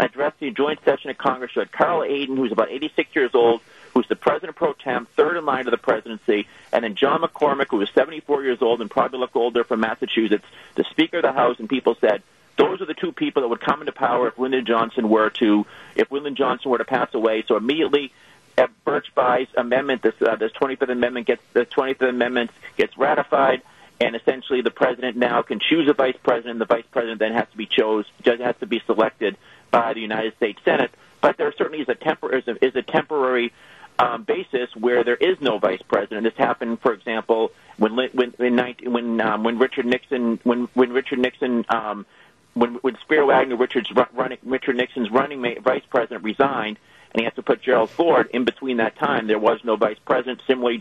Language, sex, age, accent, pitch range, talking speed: English, male, 40-59, American, 115-130 Hz, 210 wpm